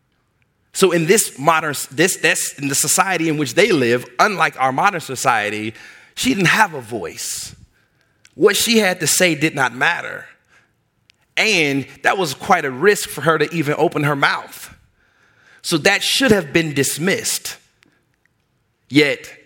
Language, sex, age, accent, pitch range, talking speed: English, male, 30-49, American, 120-155 Hz, 155 wpm